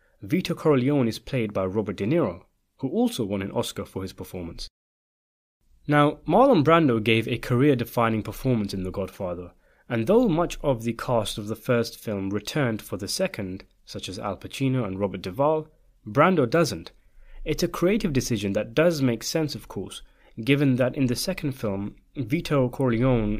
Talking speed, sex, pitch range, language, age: 175 wpm, male, 105-145 Hz, English, 30-49